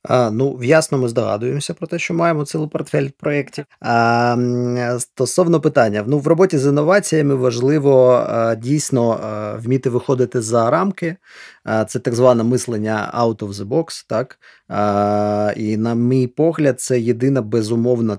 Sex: male